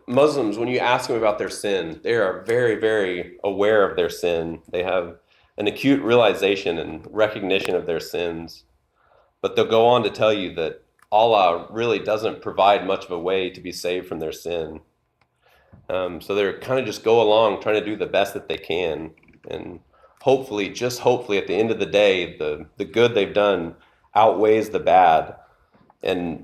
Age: 40-59